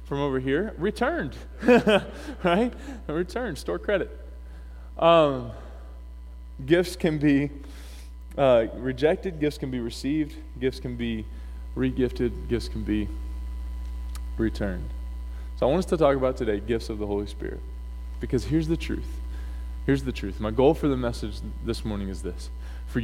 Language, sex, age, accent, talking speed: English, male, 20-39, American, 150 wpm